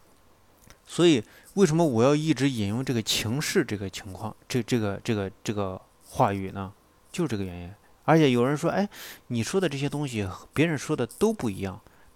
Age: 30-49